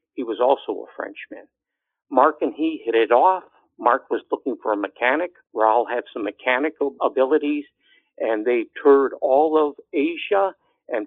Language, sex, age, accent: English, male, 60-79, American